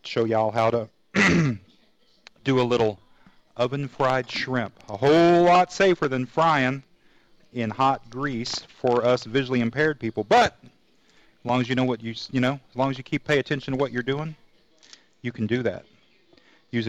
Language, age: English, 40-59